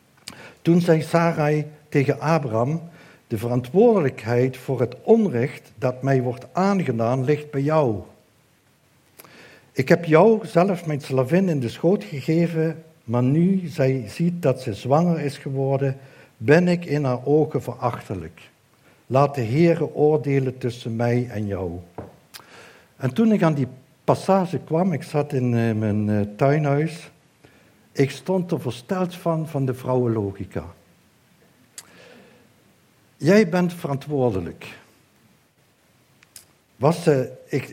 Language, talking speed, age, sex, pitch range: Dutch, 120 wpm, 60-79, male, 125-165 Hz